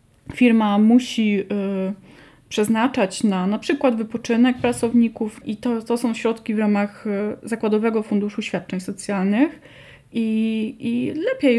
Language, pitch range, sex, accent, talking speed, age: Polish, 205-245 Hz, female, native, 120 wpm, 20-39